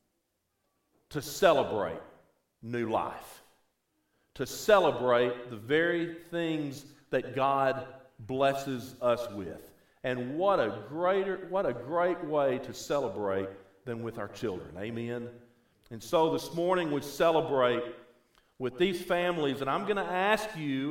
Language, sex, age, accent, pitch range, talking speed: English, male, 50-69, American, 120-170 Hz, 125 wpm